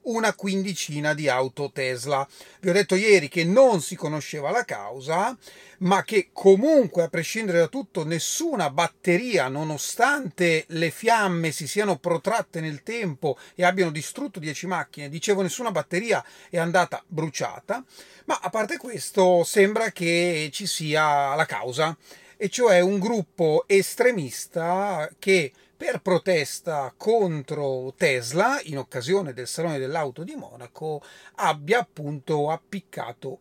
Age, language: 30-49, Italian